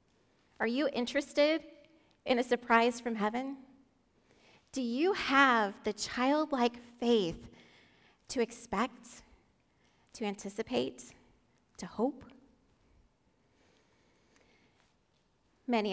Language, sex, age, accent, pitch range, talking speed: English, female, 30-49, American, 200-265 Hz, 80 wpm